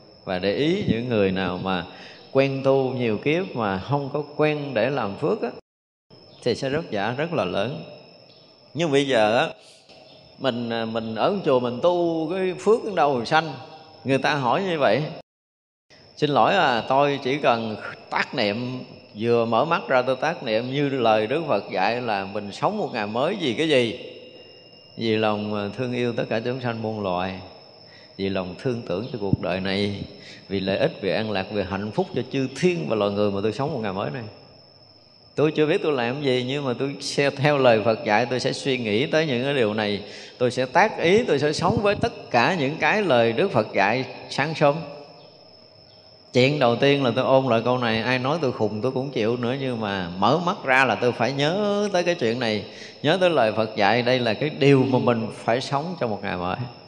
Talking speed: 215 wpm